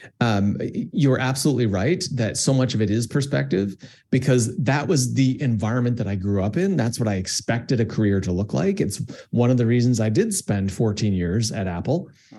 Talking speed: 205 wpm